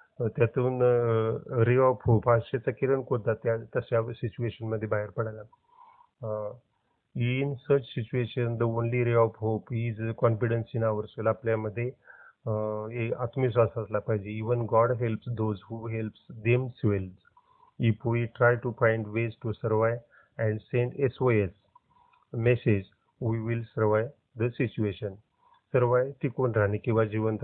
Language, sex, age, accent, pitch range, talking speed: Marathi, male, 40-59, native, 110-125 Hz, 100 wpm